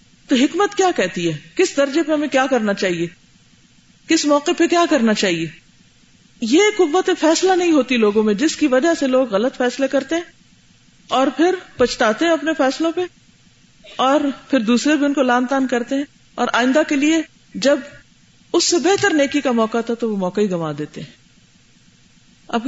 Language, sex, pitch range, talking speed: Urdu, female, 190-285 Hz, 185 wpm